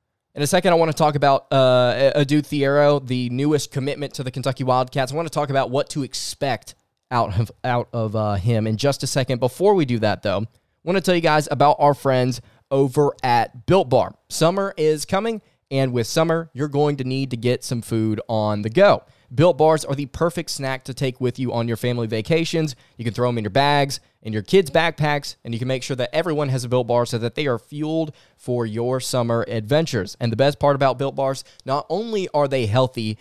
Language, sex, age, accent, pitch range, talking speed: English, male, 20-39, American, 125-150 Hz, 230 wpm